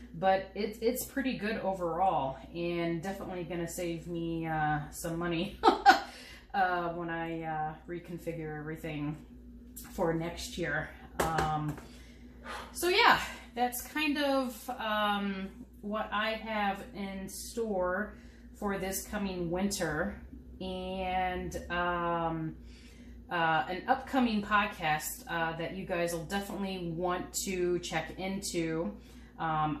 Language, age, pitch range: English, 30-49, 165-195 Hz